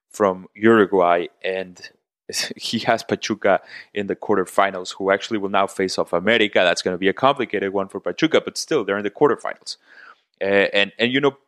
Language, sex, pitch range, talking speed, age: English, male, 100-135 Hz, 190 wpm, 20-39